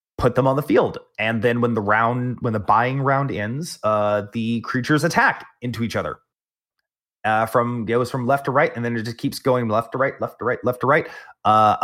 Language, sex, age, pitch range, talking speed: English, male, 20-39, 110-135 Hz, 235 wpm